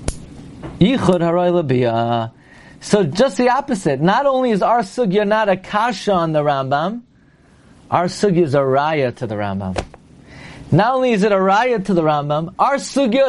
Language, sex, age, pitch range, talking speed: English, male, 40-59, 170-265 Hz, 155 wpm